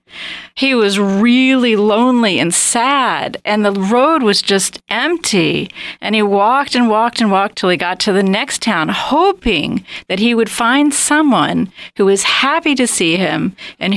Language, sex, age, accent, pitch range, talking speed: English, female, 40-59, American, 195-255 Hz, 170 wpm